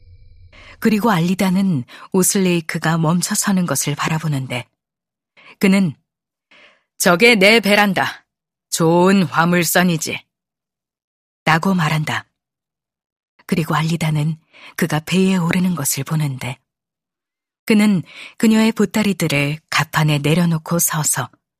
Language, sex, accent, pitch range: Korean, female, native, 145-195 Hz